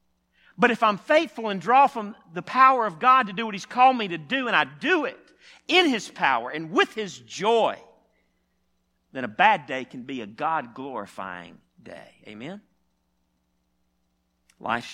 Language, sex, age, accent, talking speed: English, male, 50-69, American, 165 wpm